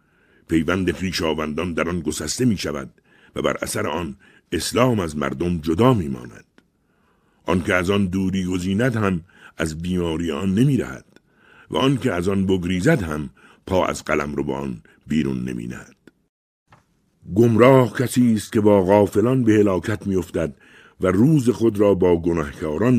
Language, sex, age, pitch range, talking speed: Persian, male, 60-79, 85-110 Hz, 155 wpm